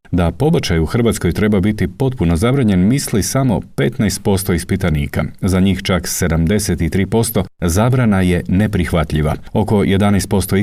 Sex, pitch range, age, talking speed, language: male, 85-105 Hz, 40-59, 120 wpm, Croatian